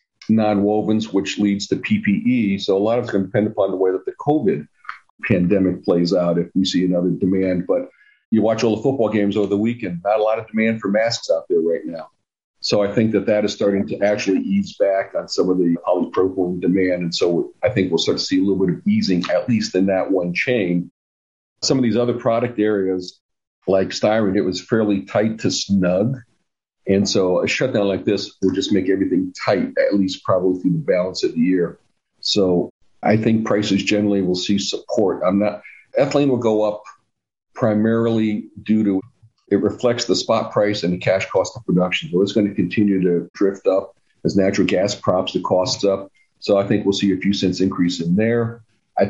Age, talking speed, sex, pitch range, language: 50-69, 210 wpm, male, 95-110 Hz, English